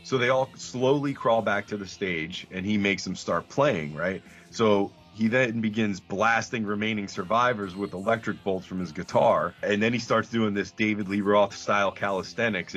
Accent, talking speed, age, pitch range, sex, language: American, 190 wpm, 30-49, 100-115 Hz, male, English